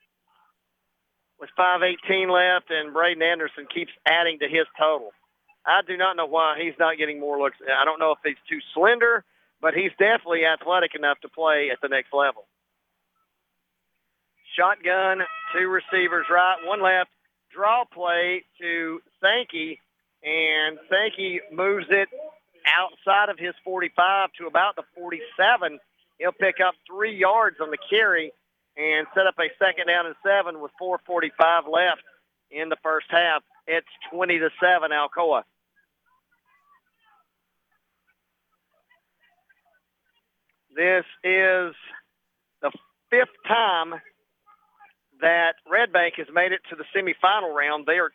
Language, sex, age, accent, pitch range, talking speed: English, male, 40-59, American, 155-200 Hz, 130 wpm